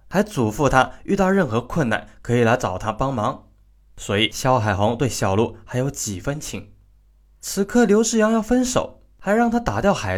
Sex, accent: male, native